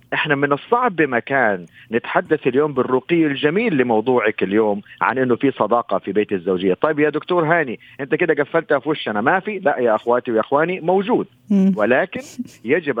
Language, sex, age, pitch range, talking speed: Arabic, male, 50-69, 120-155 Hz, 165 wpm